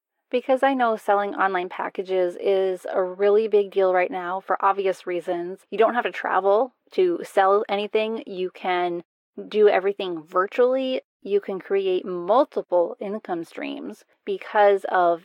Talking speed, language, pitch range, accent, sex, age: 145 wpm, English, 185-220 Hz, American, female, 20-39